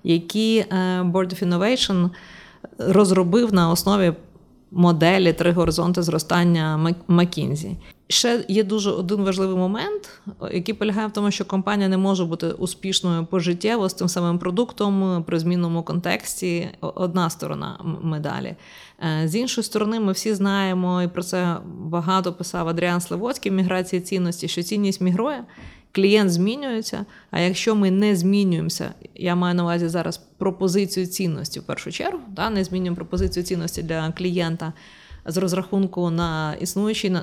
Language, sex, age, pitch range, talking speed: Ukrainian, female, 20-39, 175-200 Hz, 135 wpm